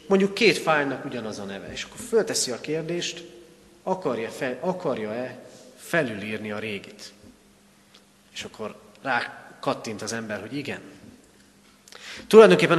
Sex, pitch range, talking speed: male, 125-175 Hz, 115 wpm